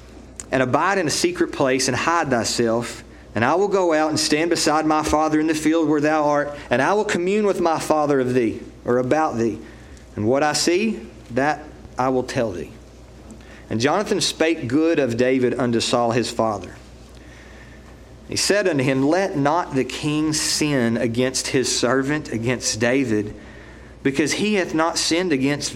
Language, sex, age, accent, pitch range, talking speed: English, male, 40-59, American, 120-180 Hz, 175 wpm